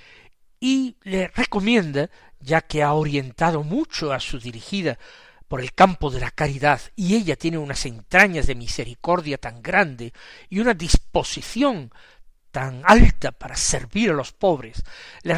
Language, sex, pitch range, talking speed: Spanish, male, 135-200 Hz, 145 wpm